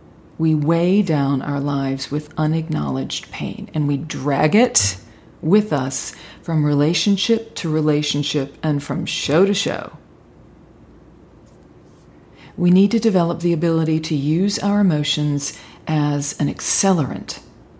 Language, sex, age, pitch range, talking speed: English, female, 40-59, 145-185 Hz, 120 wpm